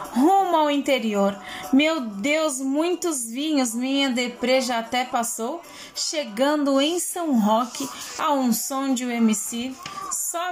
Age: 20-39